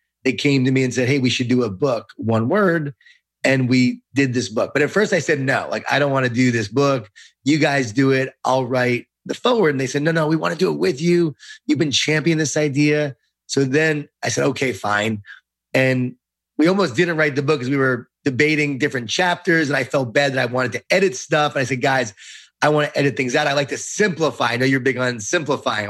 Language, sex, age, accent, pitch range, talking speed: English, male, 30-49, American, 125-155 Hz, 250 wpm